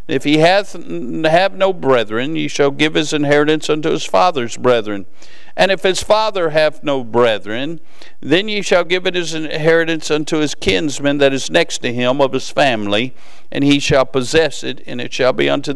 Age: 50-69